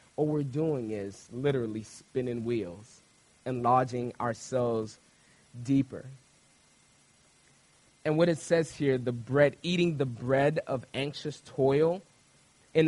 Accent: American